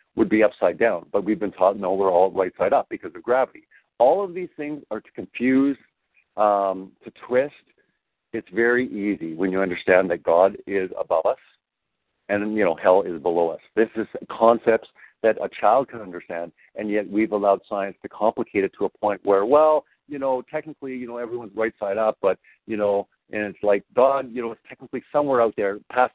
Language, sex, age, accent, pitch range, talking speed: English, male, 50-69, American, 100-130 Hz, 205 wpm